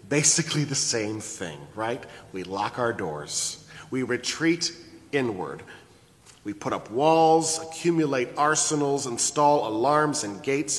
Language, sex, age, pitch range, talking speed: English, male, 40-59, 115-155 Hz, 120 wpm